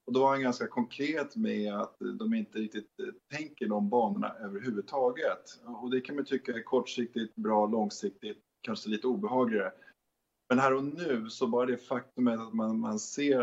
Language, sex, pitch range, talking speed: English, male, 110-155 Hz, 175 wpm